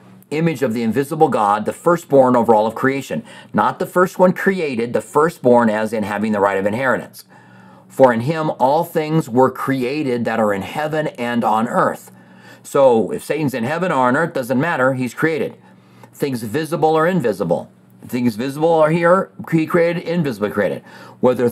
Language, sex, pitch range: English, male, 115-160 Hz